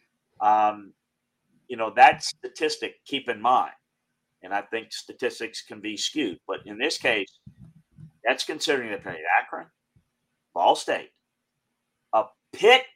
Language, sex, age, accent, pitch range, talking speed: English, male, 40-59, American, 115-195 Hz, 130 wpm